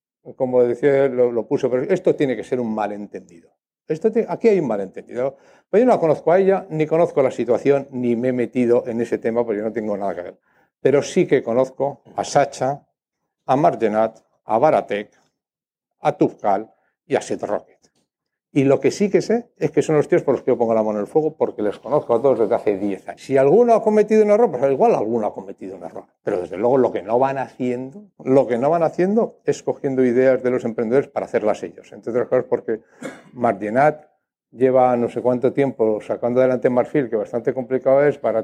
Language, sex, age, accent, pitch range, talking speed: Spanish, male, 60-79, Spanish, 115-140 Hz, 225 wpm